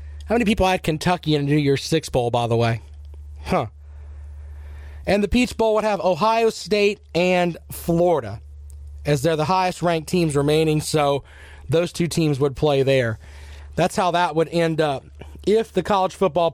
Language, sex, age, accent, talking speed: English, male, 40-59, American, 175 wpm